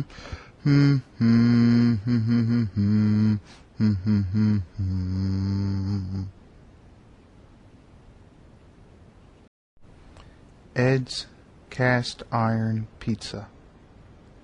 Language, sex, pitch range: English, male, 95-120 Hz